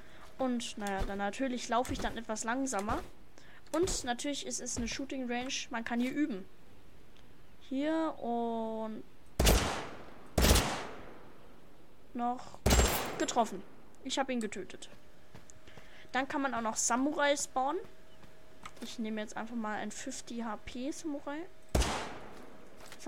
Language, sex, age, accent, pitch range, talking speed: English, female, 10-29, German, 215-270 Hz, 115 wpm